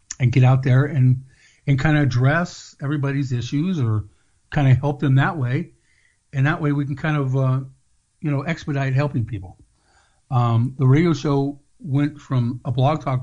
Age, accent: 50-69, American